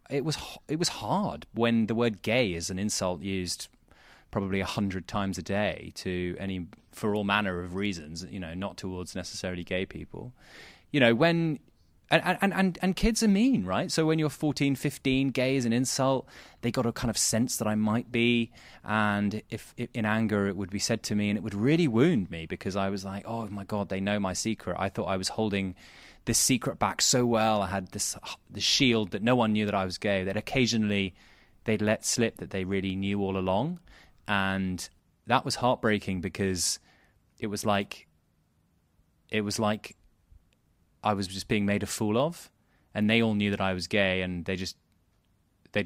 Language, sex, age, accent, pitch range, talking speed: English, male, 20-39, British, 95-120 Hz, 205 wpm